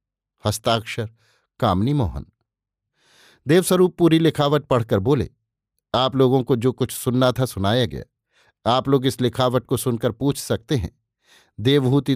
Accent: native